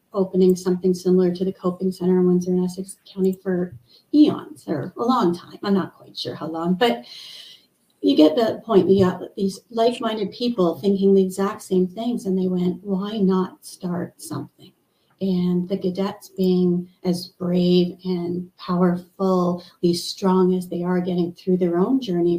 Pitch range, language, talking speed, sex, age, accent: 175-190 Hz, English, 170 wpm, female, 40-59, American